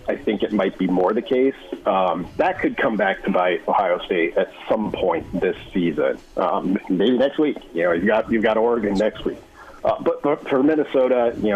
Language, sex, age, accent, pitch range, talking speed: English, male, 40-59, American, 105-145 Hz, 215 wpm